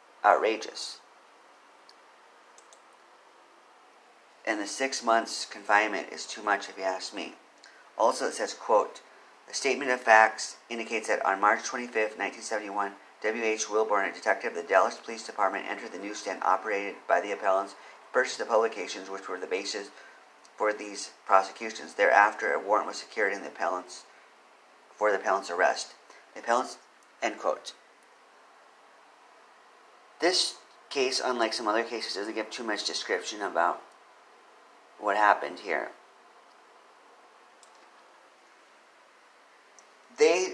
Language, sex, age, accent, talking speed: English, male, 40-59, American, 125 wpm